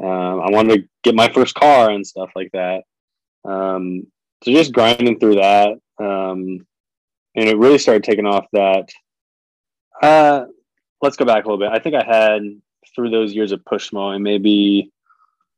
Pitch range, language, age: 100-115 Hz, English, 20-39